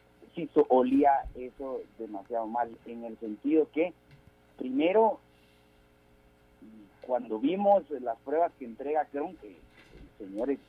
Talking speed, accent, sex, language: 100 wpm, Mexican, male, Spanish